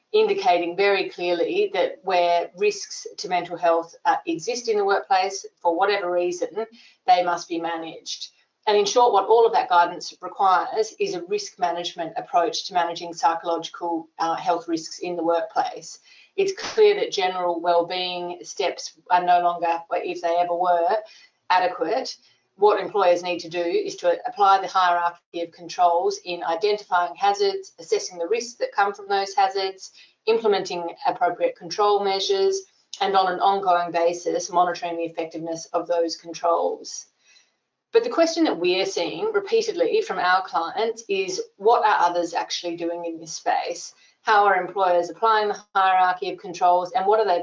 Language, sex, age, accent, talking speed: English, female, 30-49, Australian, 160 wpm